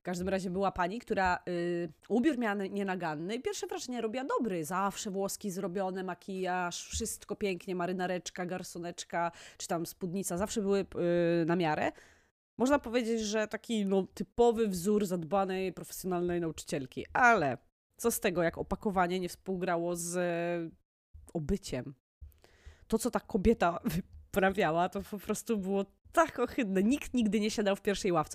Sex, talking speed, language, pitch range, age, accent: female, 150 wpm, Polish, 175-235 Hz, 20-39, native